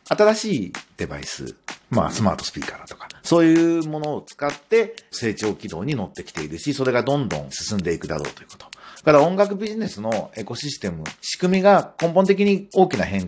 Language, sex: Japanese, male